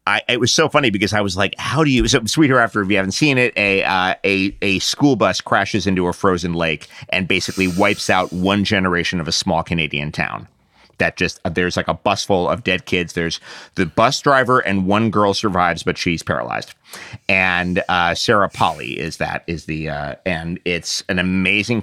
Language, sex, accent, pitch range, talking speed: English, male, American, 95-125 Hz, 210 wpm